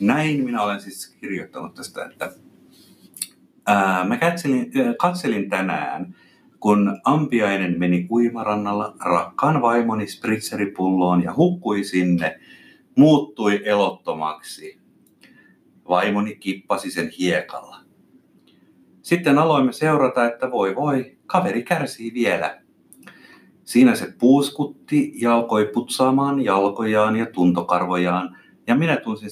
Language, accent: Finnish, native